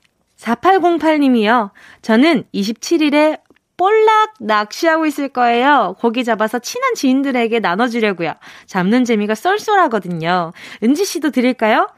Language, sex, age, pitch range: Korean, female, 20-39, 195-320 Hz